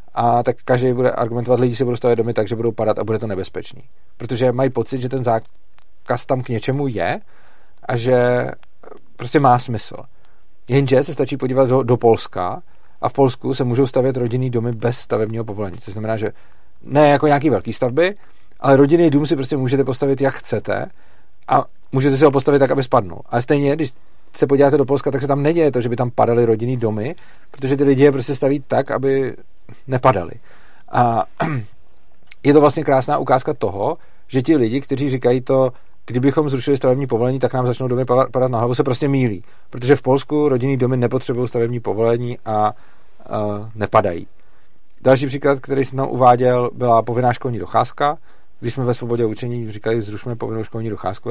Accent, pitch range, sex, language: native, 115-135 Hz, male, Czech